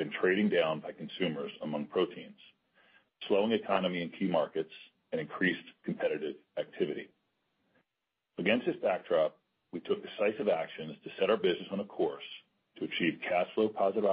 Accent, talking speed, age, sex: American, 145 wpm, 40-59, male